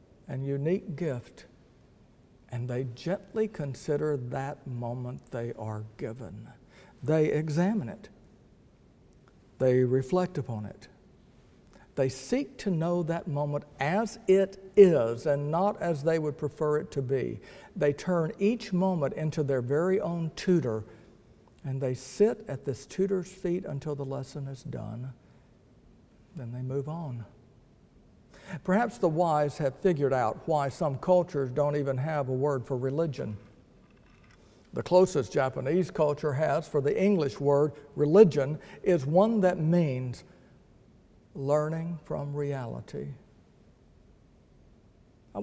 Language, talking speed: English, 125 wpm